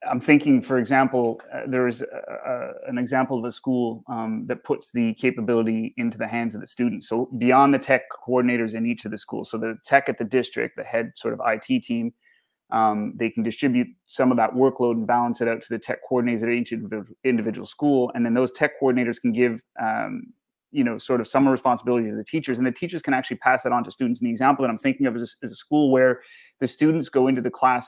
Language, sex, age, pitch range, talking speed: English, male, 30-49, 120-140 Hz, 235 wpm